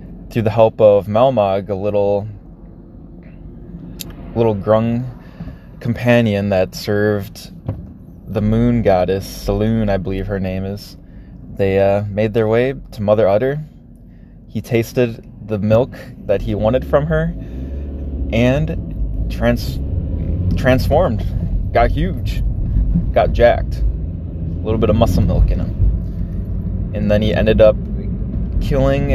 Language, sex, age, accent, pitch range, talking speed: English, male, 20-39, American, 90-115 Hz, 120 wpm